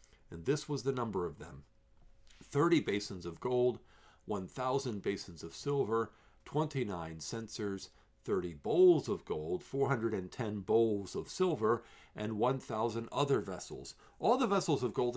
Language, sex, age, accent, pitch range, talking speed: English, male, 50-69, American, 100-140 Hz, 135 wpm